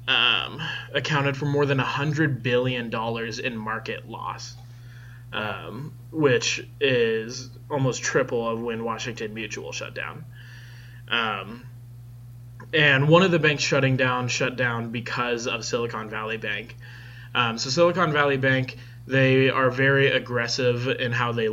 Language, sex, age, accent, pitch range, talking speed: English, male, 20-39, American, 120-130 Hz, 135 wpm